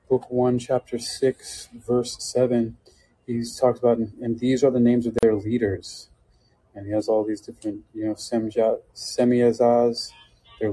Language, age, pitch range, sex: English, 30-49, 110-120 Hz, male